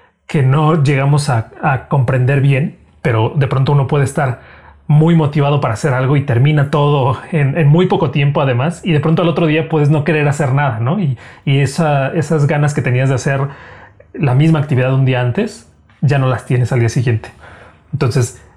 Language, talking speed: Spanish, 200 wpm